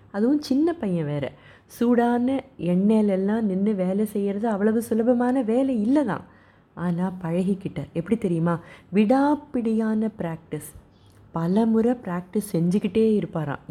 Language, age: Tamil, 30-49